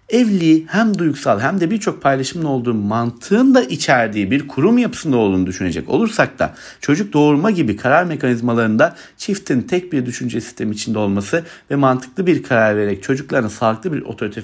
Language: Turkish